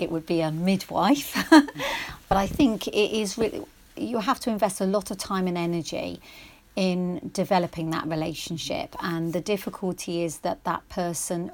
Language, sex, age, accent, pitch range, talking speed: English, female, 40-59, British, 165-190 Hz, 165 wpm